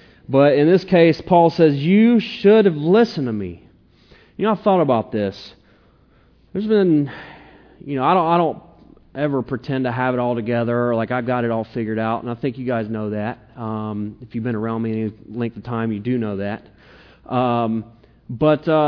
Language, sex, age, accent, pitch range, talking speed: English, male, 30-49, American, 120-160 Hz, 200 wpm